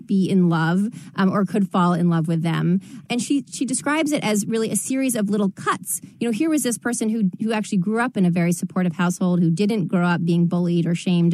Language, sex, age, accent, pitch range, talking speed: English, female, 30-49, American, 180-225 Hz, 250 wpm